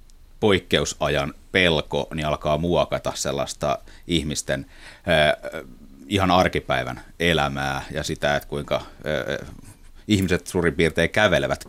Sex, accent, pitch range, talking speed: male, native, 75-100 Hz, 90 wpm